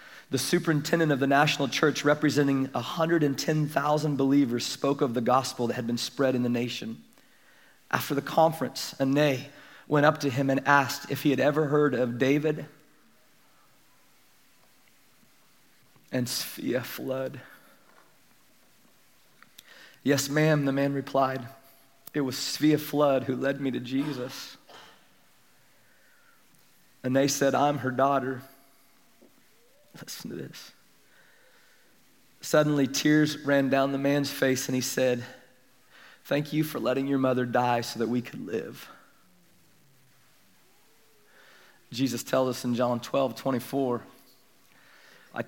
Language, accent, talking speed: English, American, 125 wpm